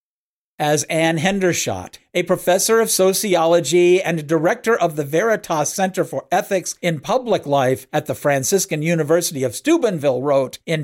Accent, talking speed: American, 145 wpm